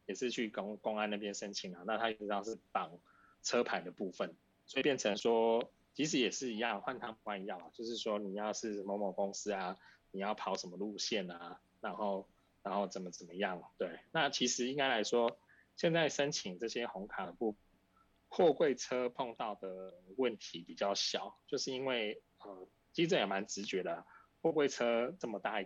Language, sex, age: Chinese, male, 20-39